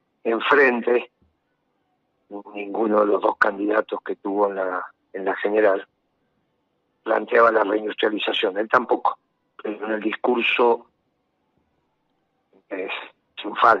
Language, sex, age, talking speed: Spanish, male, 50-69, 100 wpm